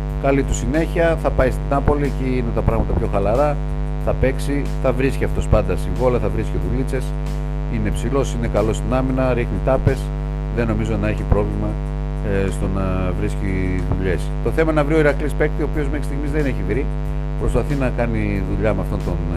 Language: Greek